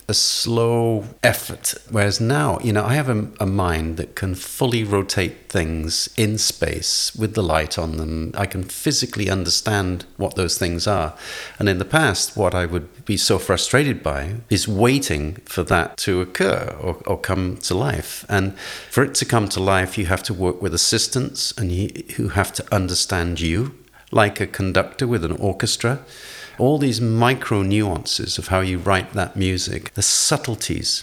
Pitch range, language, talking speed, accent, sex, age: 90-115 Hz, English, 175 wpm, British, male, 40-59